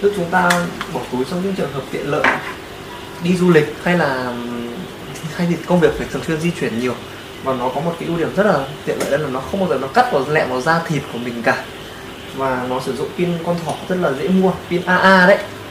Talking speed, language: 255 wpm, Vietnamese